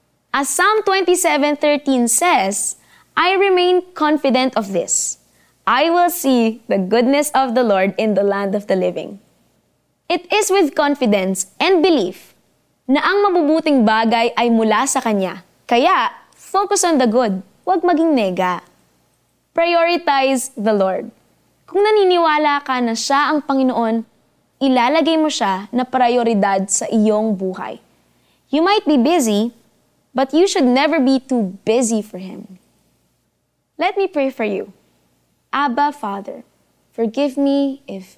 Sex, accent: female, native